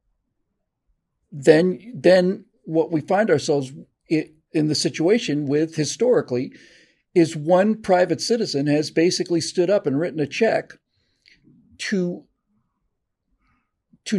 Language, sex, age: English, male, 50-69